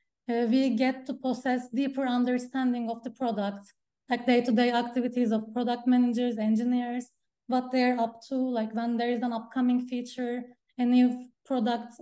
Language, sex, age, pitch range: English, female, 20-39, 240-260 Hz